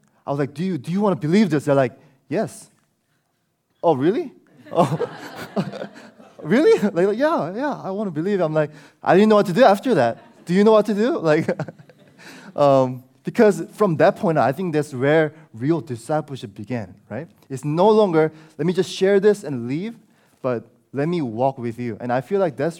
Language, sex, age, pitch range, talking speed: English, male, 20-39, 120-170 Hz, 210 wpm